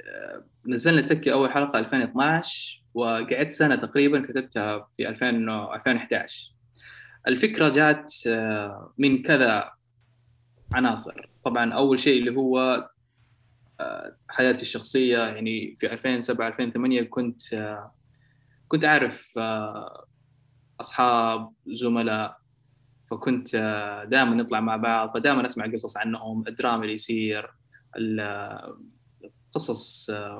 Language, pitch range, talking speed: Arabic, 115-130 Hz, 90 wpm